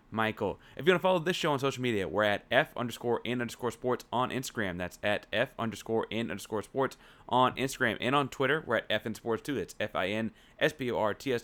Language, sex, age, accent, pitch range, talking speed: English, male, 30-49, American, 110-130 Hz, 205 wpm